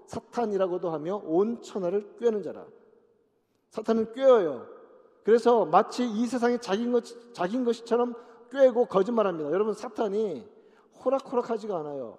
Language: Korean